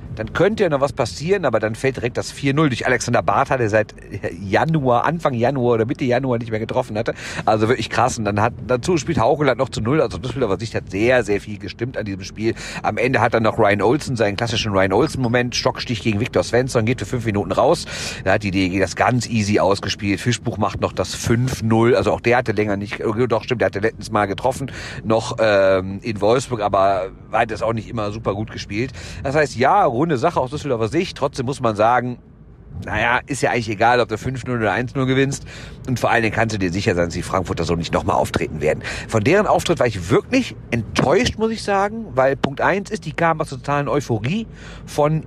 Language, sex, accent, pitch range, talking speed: German, male, German, 105-130 Hz, 230 wpm